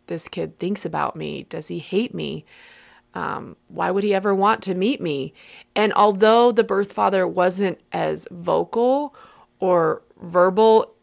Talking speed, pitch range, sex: 150 wpm, 185-220 Hz, female